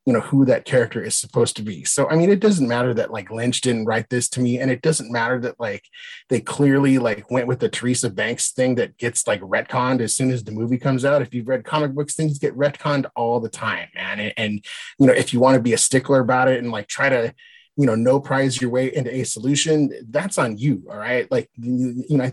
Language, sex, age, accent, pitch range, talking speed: English, male, 30-49, American, 120-140 Hz, 260 wpm